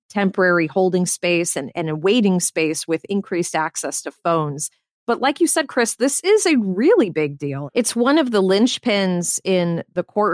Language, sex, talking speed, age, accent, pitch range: English, female, 185 wpm, 30-49, American, 165-205 Hz